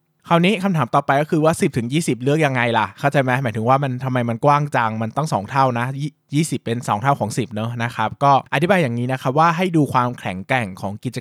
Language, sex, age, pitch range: Thai, male, 20-39, 115-145 Hz